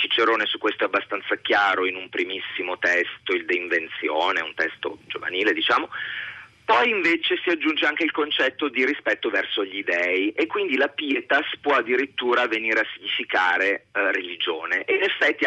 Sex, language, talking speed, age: male, Italian, 165 wpm, 30-49